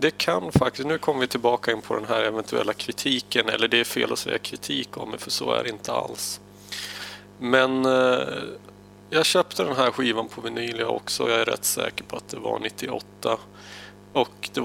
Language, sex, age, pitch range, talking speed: Swedish, male, 30-49, 100-125 Hz, 210 wpm